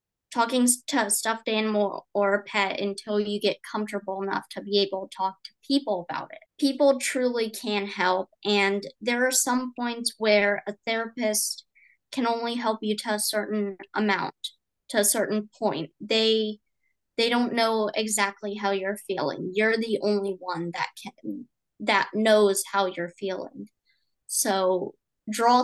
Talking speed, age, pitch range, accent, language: 155 wpm, 20-39, 200-230 Hz, American, English